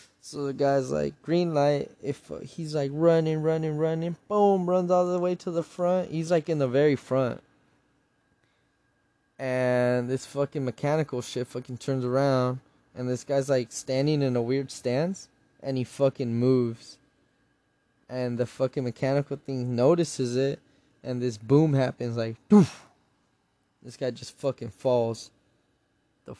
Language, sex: English, male